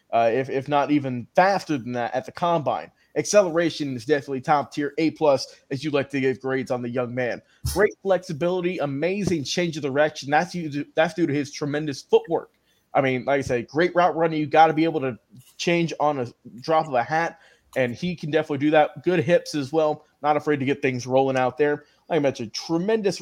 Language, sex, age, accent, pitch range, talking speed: English, male, 20-39, American, 140-175 Hz, 215 wpm